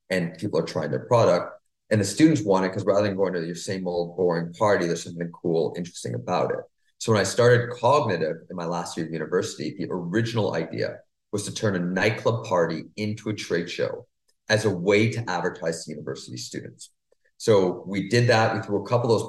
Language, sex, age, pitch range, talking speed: English, male, 30-49, 90-120 Hz, 215 wpm